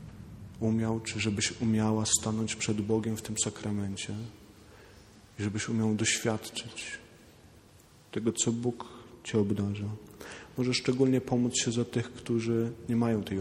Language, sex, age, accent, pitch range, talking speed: Polish, male, 40-59, native, 105-115 Hz, 130 wpm